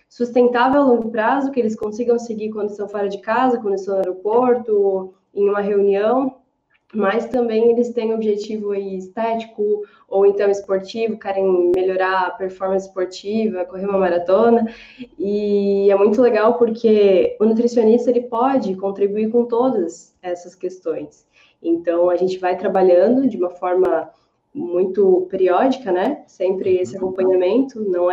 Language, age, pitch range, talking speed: Portuguese, 10-29, 190-235 Hz, 145 wpm